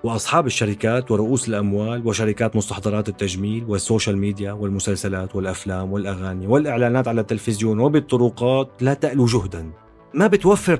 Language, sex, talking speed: Arabic, male, 115 wpm